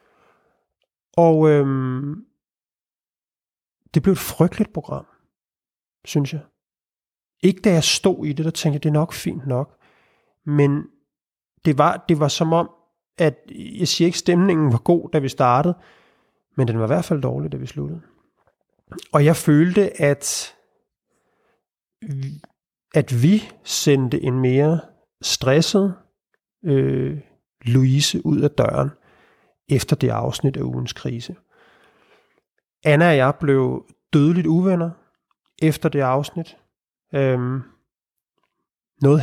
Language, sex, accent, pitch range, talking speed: Danish, male, native, 130-165 Hz, 125 wpm